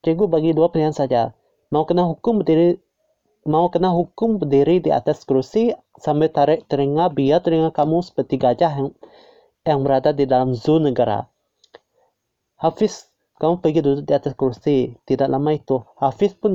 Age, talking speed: 30-49, 155 wpm